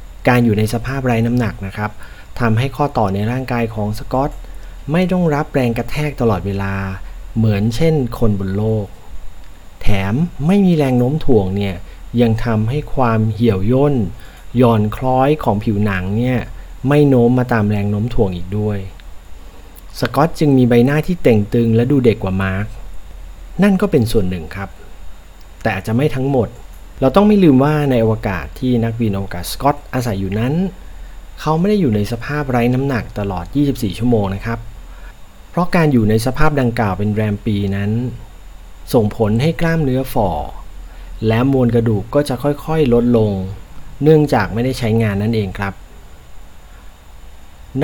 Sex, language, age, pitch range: male, Thai, 30-49, 95-130 Hz